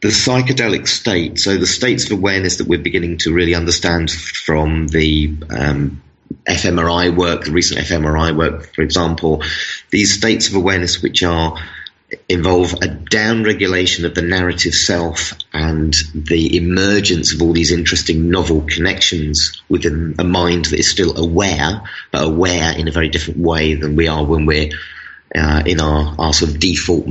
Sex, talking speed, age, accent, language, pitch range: male, 160 wpm, 30-49, British, English, 80-105 Hz